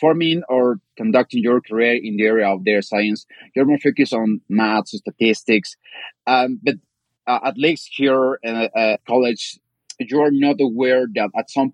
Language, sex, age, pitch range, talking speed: English, male, 30-49, 110-135 Hz, 175 wpm